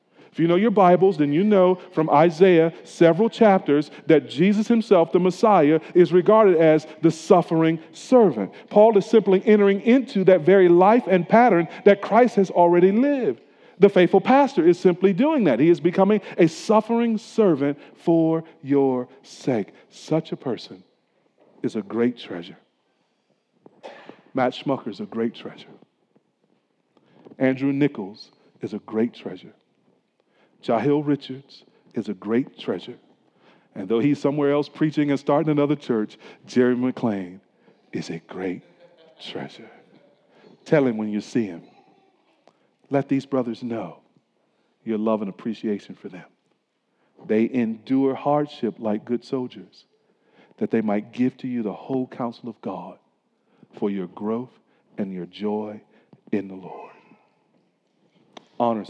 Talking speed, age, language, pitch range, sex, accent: 140 wpm, 40-59, English, 125-190 Hz, male, American